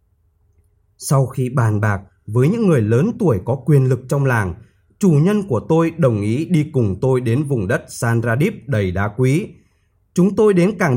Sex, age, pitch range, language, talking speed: male, 20-39, 110-160 Hz, Vietnamese, 185 wpm